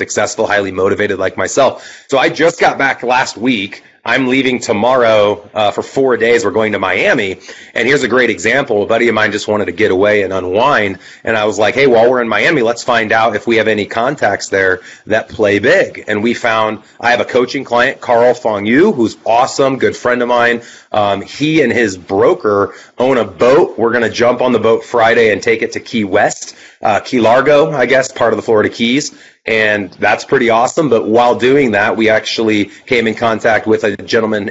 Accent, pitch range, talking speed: American, 105-120 Hz, 215 wpm